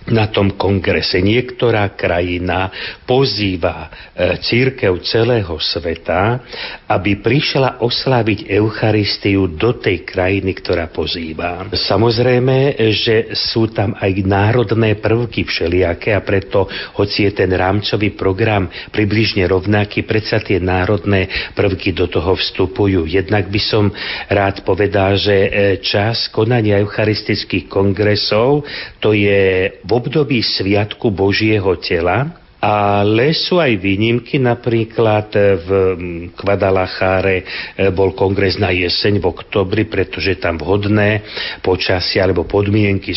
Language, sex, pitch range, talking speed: Slovak, male, 95-110 Hz, 110 wpm